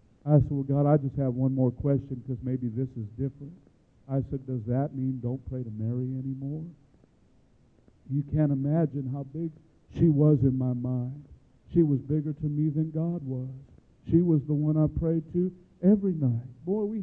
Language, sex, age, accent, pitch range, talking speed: English, male, 50-69, American, 125-155 Hz, 190 wpm